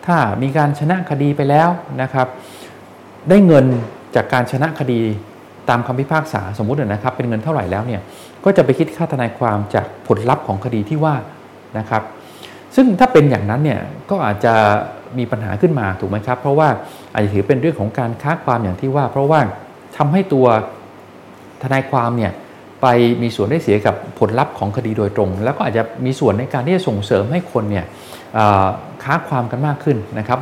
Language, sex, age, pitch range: Thai, male, 20-39, 105-145 Hz